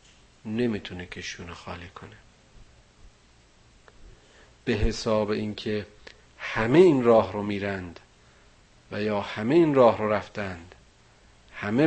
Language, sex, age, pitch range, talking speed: Persian, male, 50-69, 90-110 Hz, 100 wpm